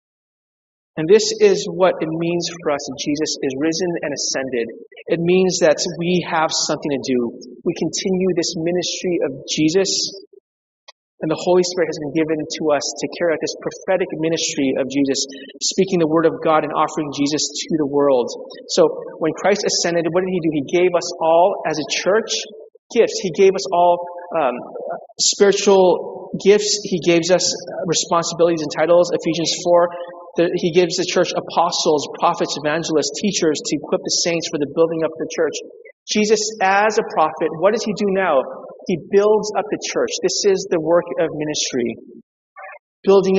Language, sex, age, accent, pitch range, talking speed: English, male, 30-49, American, 155-190 Hz, 175 wpm